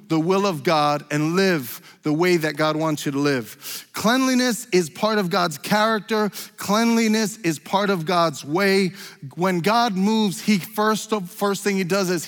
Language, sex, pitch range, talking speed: English, male, 170-215 Hz, 175 wpm